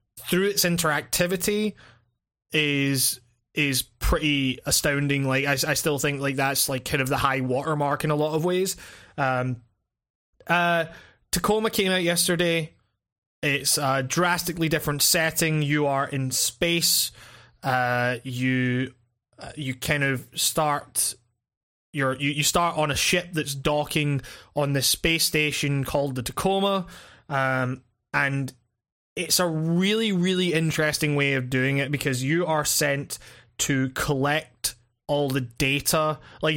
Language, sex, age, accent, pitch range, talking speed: English, male, 20-39, British, 130-160 Hz, 140 wpm